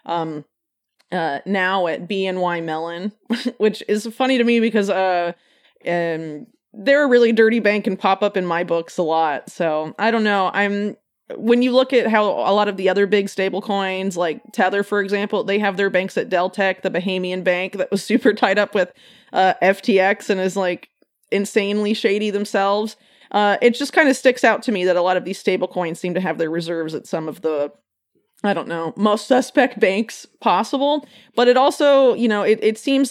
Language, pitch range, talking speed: English, 180-225 Hz, 205 wpm